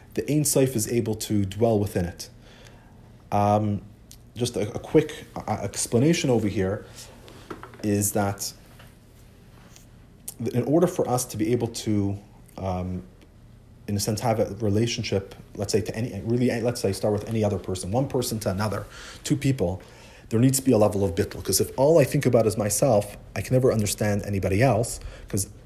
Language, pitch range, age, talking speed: English, 105-140 Hz, 30-49, 175 wpm